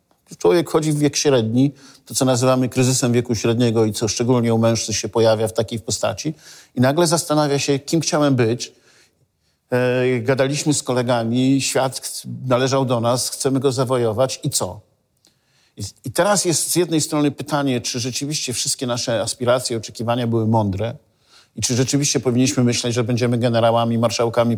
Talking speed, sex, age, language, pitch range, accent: 155 wpm, male, 50-69, Polish, 120-150 Hz, native